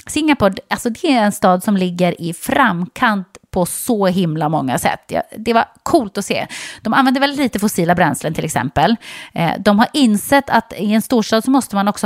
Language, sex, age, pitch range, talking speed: English, female, 30-49, 180-255 Hz, 200 wpm